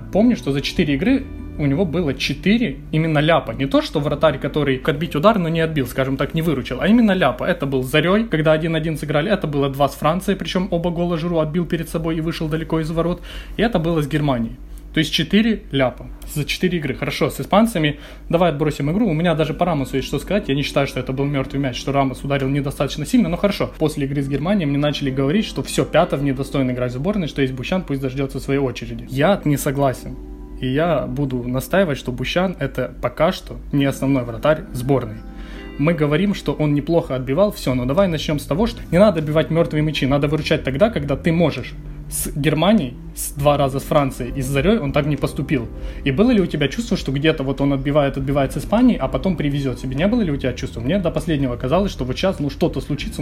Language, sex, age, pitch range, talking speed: Ukrainian, male, 20-39, 135-165 Hz, 230 wpm